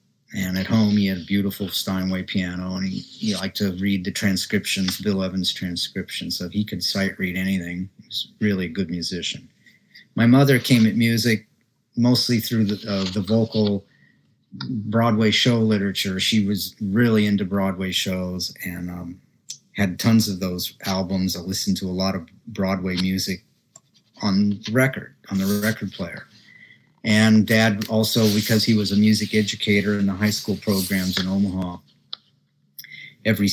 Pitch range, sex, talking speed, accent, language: 95-110 Hz, male, 160 wpm, American, English